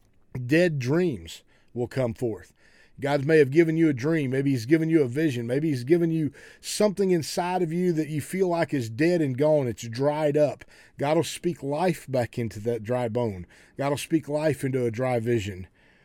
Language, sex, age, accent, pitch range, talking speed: English, male, 40-59, American, 130-180 Hz, 200 wpm